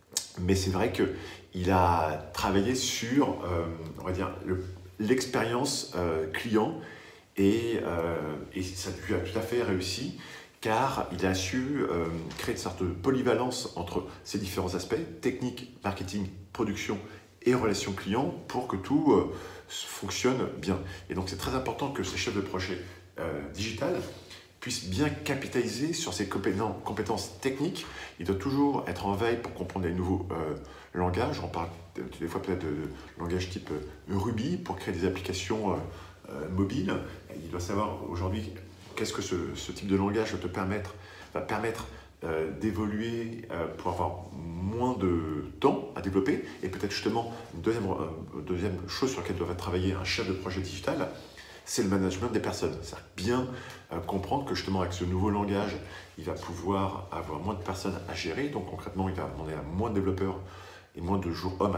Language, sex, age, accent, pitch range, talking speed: French, male, 40-59, French, 90-105 Hz, 165 wpm